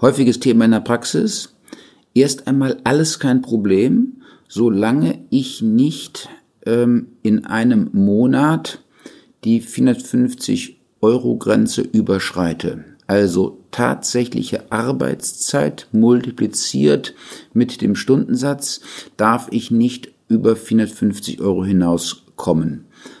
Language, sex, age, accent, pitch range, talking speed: German, male, 50-69, German, 115-150 Hz, 90 wpm